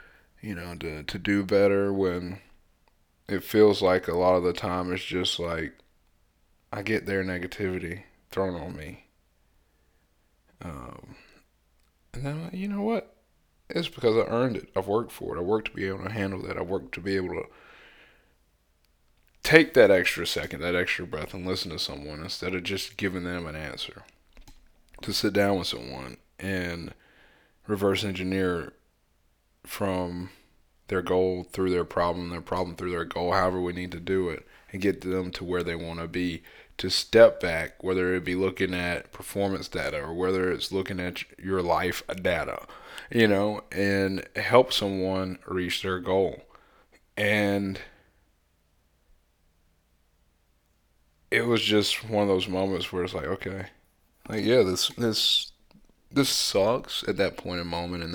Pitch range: 85-95 Hz